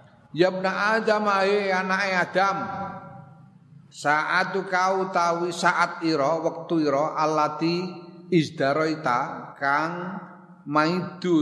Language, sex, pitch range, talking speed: Indonesian, male, 115-165 Hz, 90 wpm